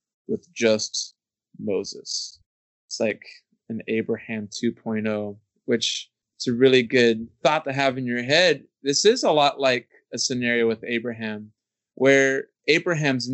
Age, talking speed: 20-39, 135 wpm